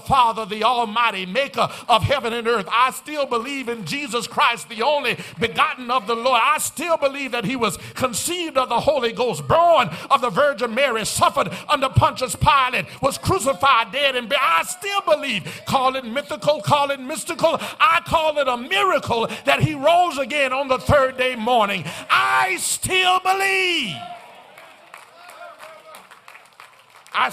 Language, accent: English, American